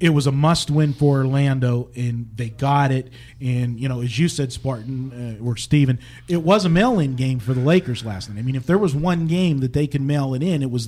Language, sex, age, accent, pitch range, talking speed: English, male, 40-59, American, 130-165 Hz, 250 wpm